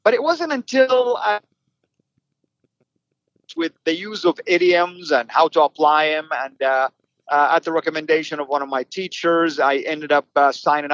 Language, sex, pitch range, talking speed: English, male, 145-175 Hz, 170 wpm